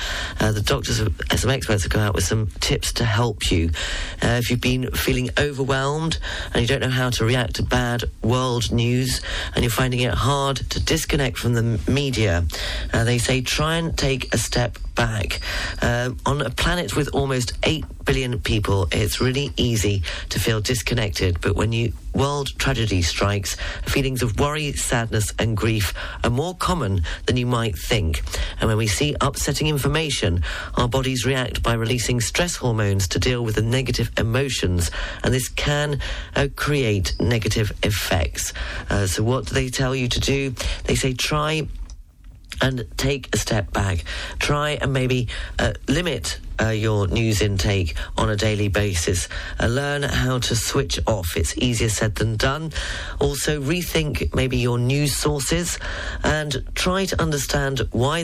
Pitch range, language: 100-130 Hz, English